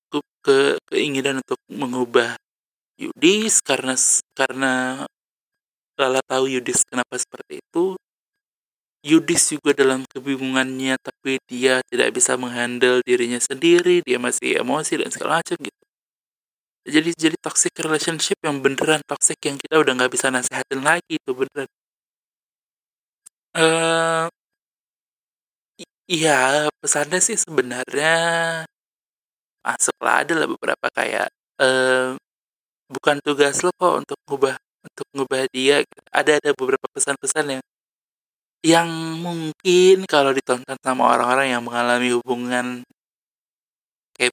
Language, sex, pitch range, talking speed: Indonesian, male, 130-195 Hz, 110 wpm